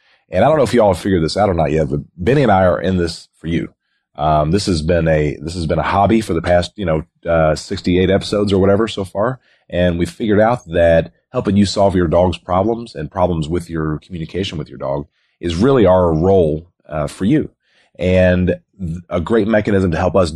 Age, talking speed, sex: 30-49, 230 wpm, male